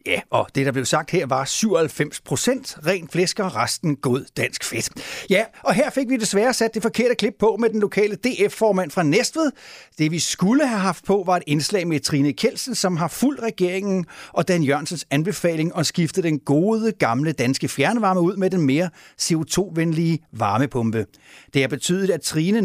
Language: Danish